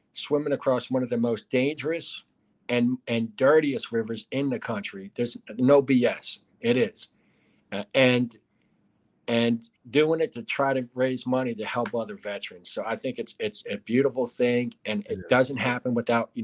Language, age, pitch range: English, 40-59, 120-135 Hz